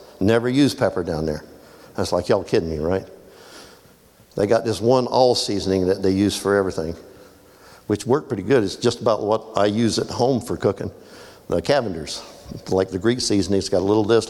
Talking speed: 200 wpm